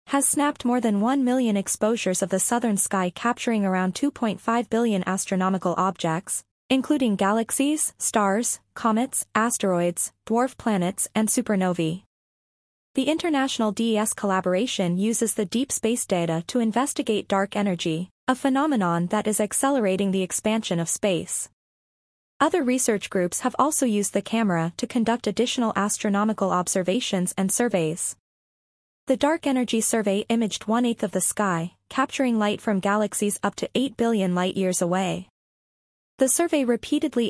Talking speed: 140 wpm